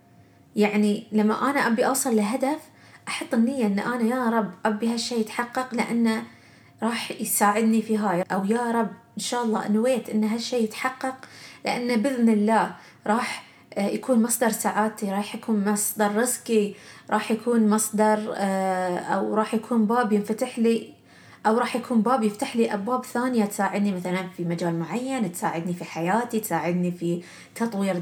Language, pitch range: Arabic, 205-245 Hz